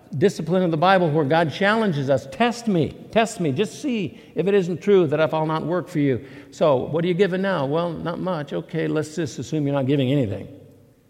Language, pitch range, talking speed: English, 135-175 Hz, 220 wpm